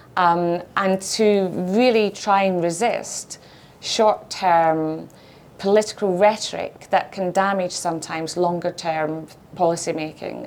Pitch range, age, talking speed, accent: 160-185 Hz, 30-49, 90 wpm, British